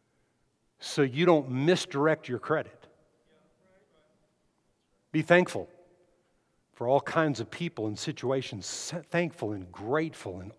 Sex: male